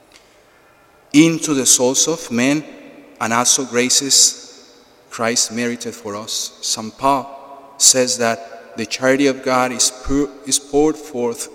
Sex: male